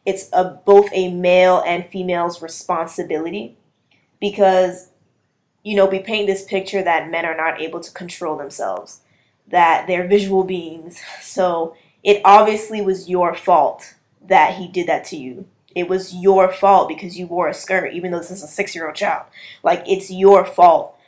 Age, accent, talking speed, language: 20-39, American, 170 wpm, English